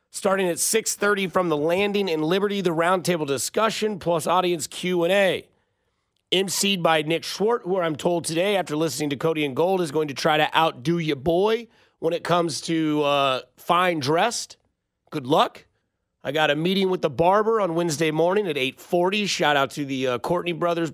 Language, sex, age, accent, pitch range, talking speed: English, male, 30-49, American, 155-195 Hz, 195 wpm